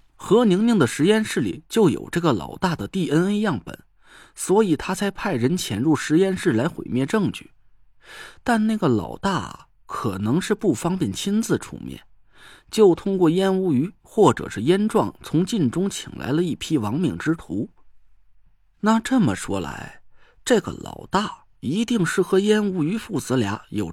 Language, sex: Chinese, male